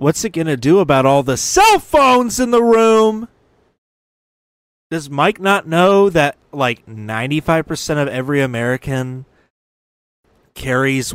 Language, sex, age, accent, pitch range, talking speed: English, male, 30-49, American, 115-145 Hz, 130 wpm